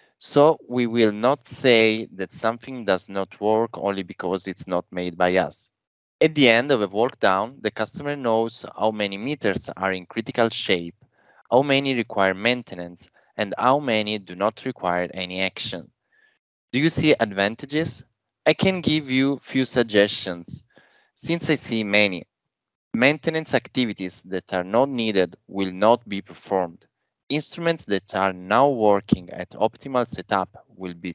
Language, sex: English, male